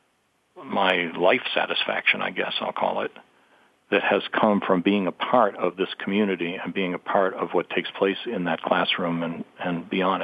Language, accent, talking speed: English, American, 190 wpm